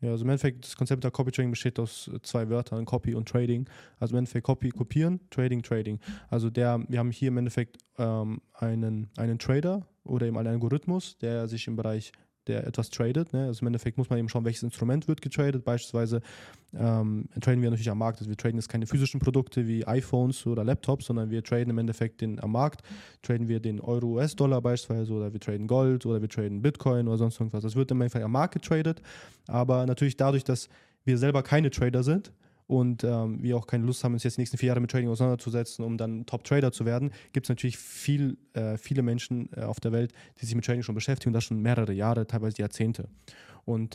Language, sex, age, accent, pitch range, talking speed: German, male, 20-39, German, 115-135 Hz, 215 wpm